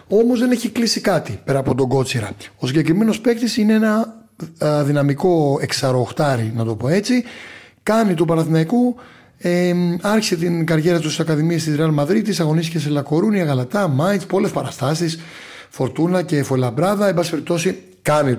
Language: Greek